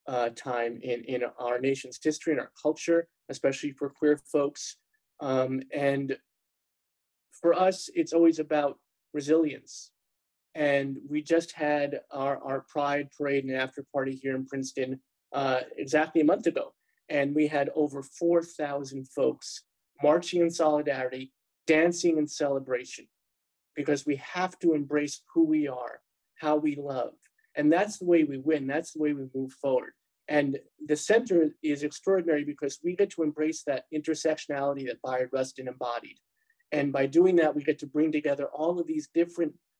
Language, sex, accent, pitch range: English, male, American, 140-165 Hz